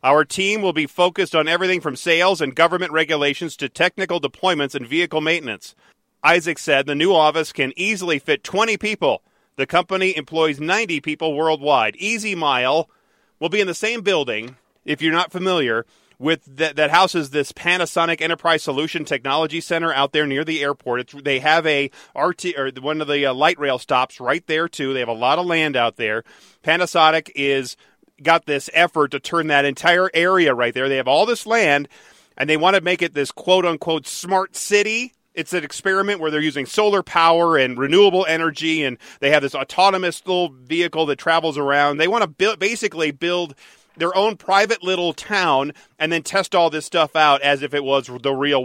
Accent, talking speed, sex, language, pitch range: American, 190 wpm, male, English, 145-180 Hz